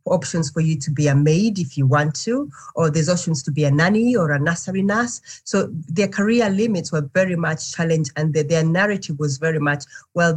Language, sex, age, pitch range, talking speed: English, female, 30-49, 145-180 Hz, 220 wpm